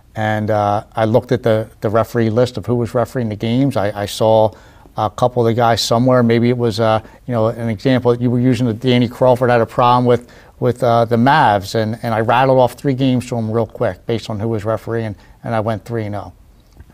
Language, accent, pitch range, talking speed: English, American, 110-120 Hz, 235 wpm